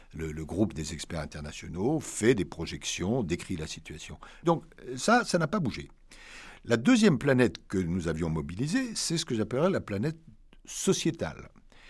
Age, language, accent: 60-79, English, French